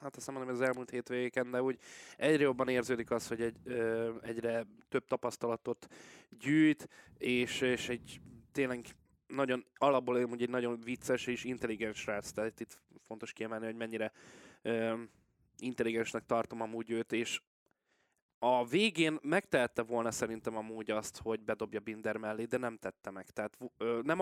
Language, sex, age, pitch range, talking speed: Hungarian, male, 20-39, 115-130 Hz, 160 wpm